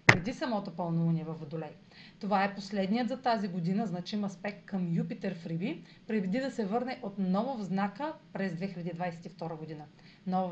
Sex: female